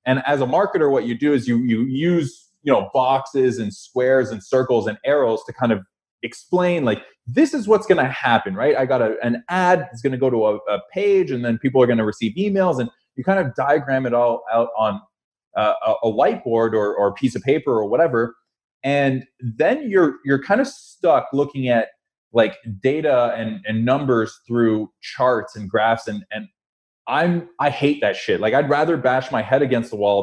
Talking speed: 215 wpm